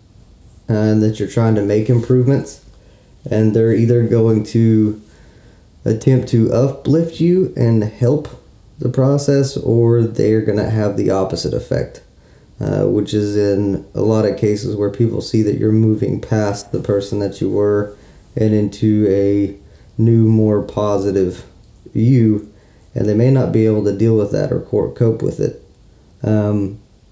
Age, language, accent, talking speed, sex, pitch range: 20-39, English, American, 155 wpm, male, 100-115 Hz